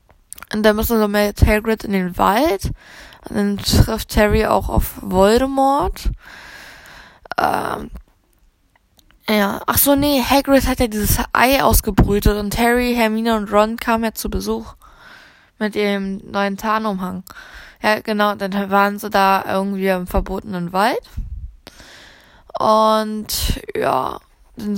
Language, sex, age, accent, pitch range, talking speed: German, female, 10-29, German, 195-230 Hz, 135 wpm